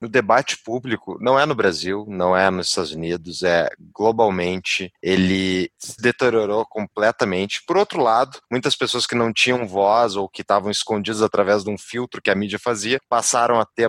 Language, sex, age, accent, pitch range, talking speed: Portuguese, male, 20-39, Brazilian, 105-150 Hz, 180 wpm